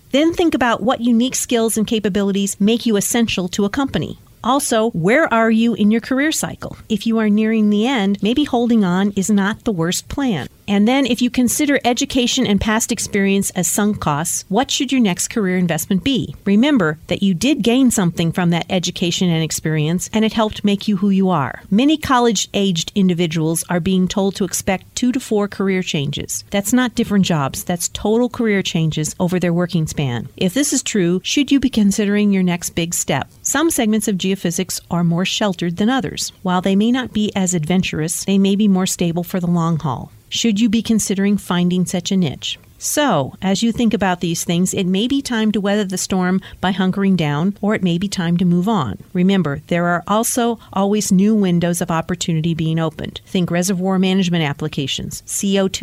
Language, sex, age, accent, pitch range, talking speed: English, female, 40-59, American, 175-220 Hz, 200 wpm